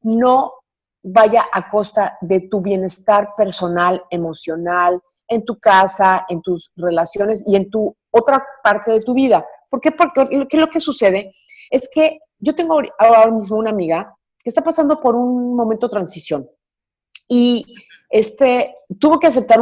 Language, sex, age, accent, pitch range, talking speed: Spanish, female, 40-59, Mexican, 180-255 Hz, 155 wpm